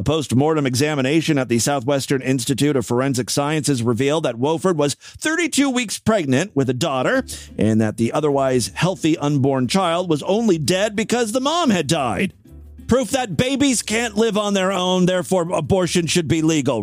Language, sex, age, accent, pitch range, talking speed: English, male, 40-59, American, 135-185 Hz, 170 wpm